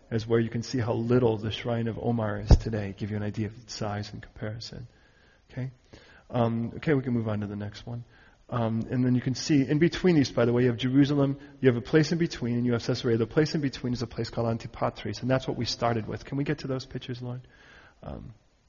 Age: 30-49